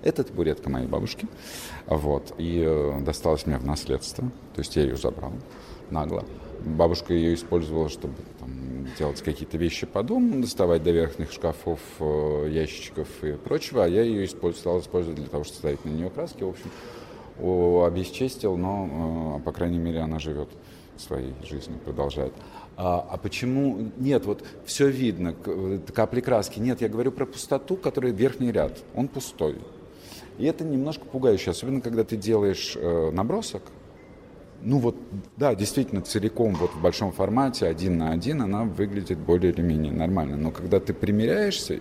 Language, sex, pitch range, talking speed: Russian, male, 80-115 Hz, 150 wpm